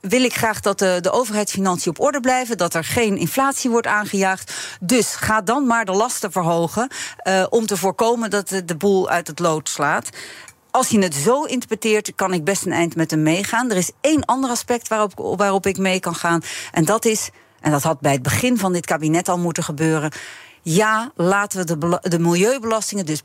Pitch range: 165-215 Hz